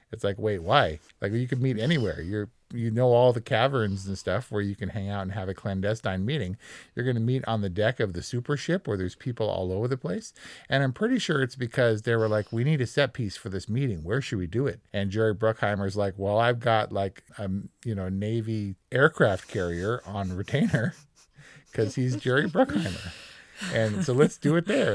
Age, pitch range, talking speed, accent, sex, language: 40-59, 100-125 Hz, 225 wpm, American, male, English